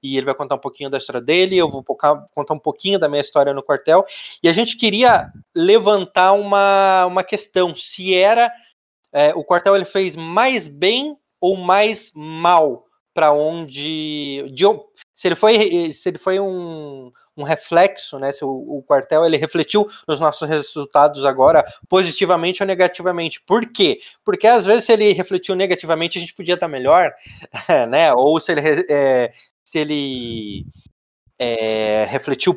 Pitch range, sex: 150-200 Hz, male